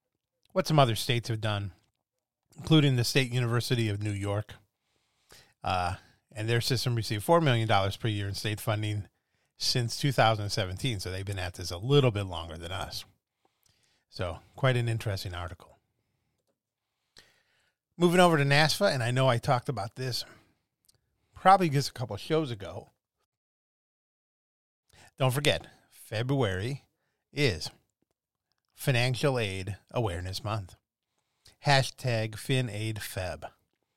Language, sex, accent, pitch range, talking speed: English, male, American, 100-130 Hz, 125 wpm